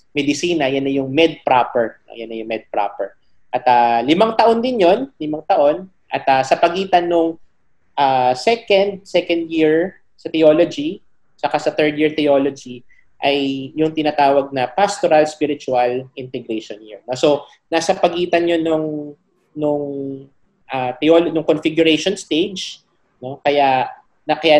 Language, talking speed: English, 135 wpm